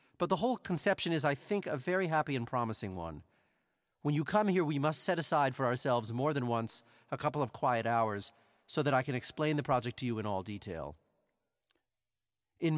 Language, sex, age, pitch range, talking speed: English, male, 40-59, 120-155 Hz, 205 wpm